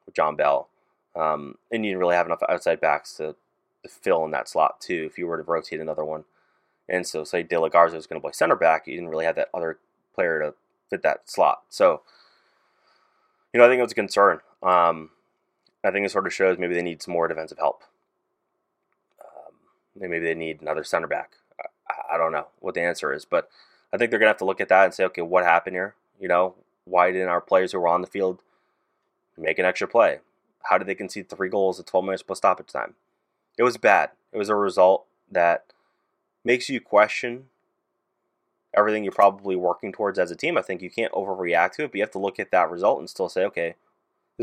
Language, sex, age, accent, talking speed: English, male, 20-39, American, 230 wpm